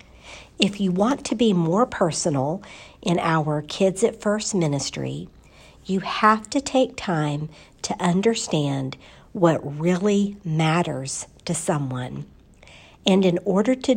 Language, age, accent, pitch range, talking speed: English, 60-79, American, 150-200 Hz, 125 wpm